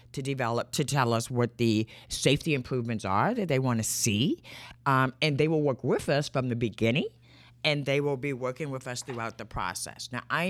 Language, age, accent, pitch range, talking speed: English, 50-69, American, 125-165 Hz, 210 wpm